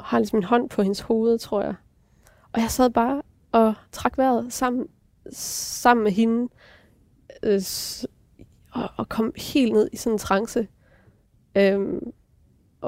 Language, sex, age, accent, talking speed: Danish, female, 20-39, native, 145 wpm